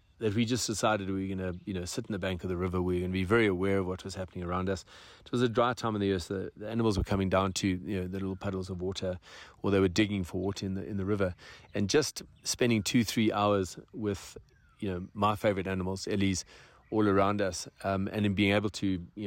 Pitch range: 95-105 Hz